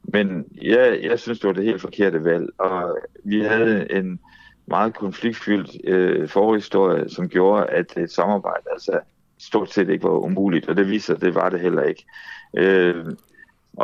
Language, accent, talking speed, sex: Danish, native, 170 wpm, male